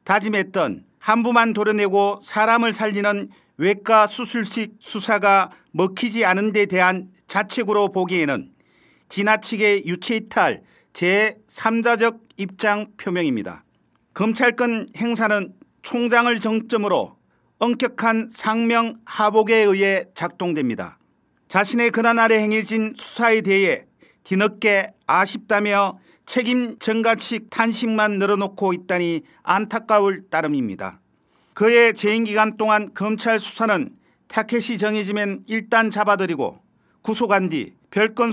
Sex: male